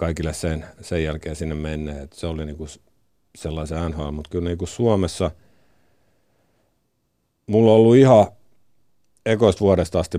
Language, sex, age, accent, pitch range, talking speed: Finnish, male, 50-69, native, 75-90 Hz, 135 wpm